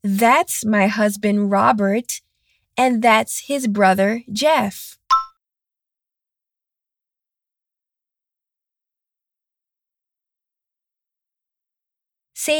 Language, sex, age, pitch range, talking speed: Spanish, female, 20-39, 210-295 Hz, 50 wpm